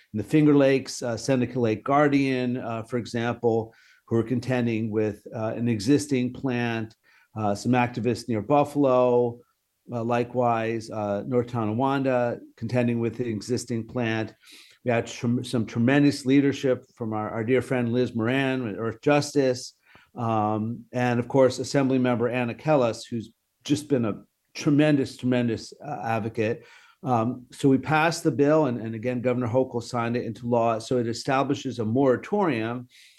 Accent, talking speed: American, 150 wpm